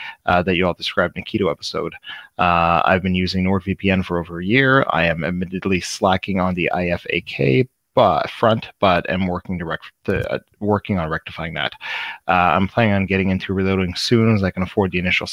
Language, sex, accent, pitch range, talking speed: English, male, American, 90-105 Hz, 190 wpm